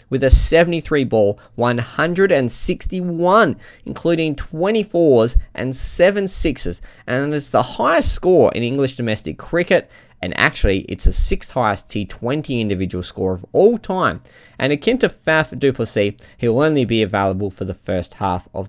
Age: 20-39